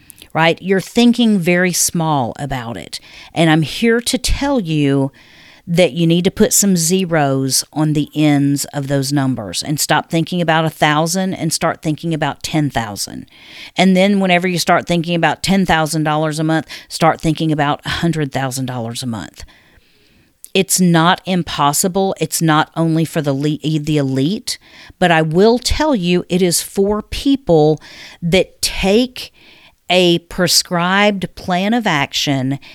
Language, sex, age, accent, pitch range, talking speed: English, female, 50-69, American, 150-195 Hz, 155 wpm